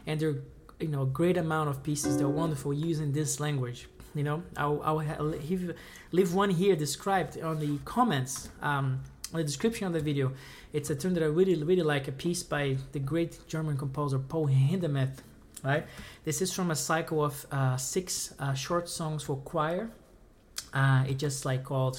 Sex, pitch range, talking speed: male, 130-155 Hz, 190 wpm